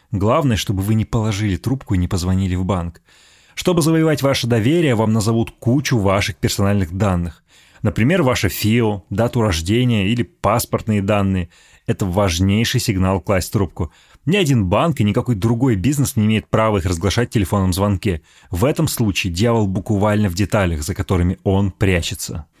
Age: 30-49